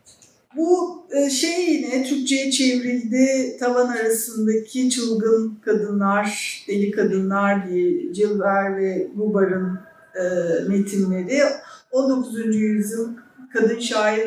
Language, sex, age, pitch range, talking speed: Turkish, female, 50-69, 200-270 Hz, 85 wpm